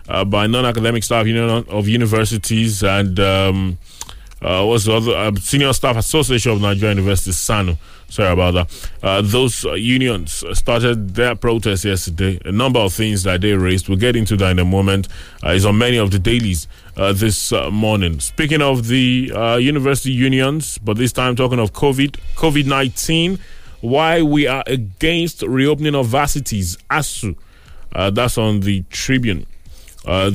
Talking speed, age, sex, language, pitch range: 170 wpm, 20-39, male, English, 95-130 Hz